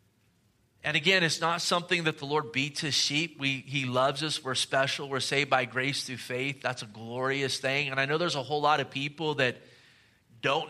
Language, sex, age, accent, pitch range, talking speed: English, male, 30-49, American, 135-170 Hz, 215 wpm